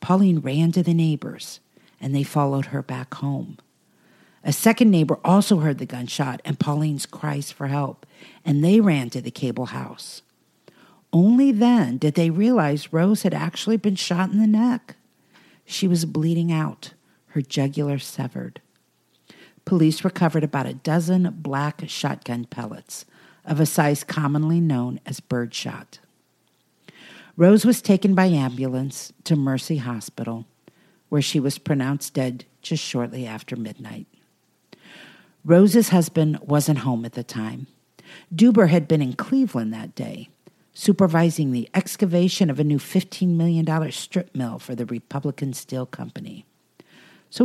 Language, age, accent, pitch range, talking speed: English, 50-69, American, 140-185 Hz, 140 wpm